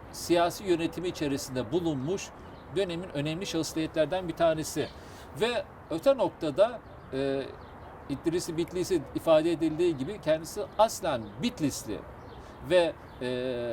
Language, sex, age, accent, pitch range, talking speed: Turkish, male, 50-69, native, 130-200 Hz, 100 wpm